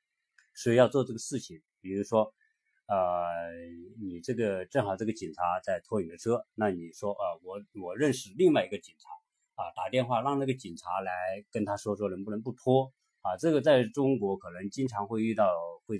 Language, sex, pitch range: Chinese, male, 100-140 Hz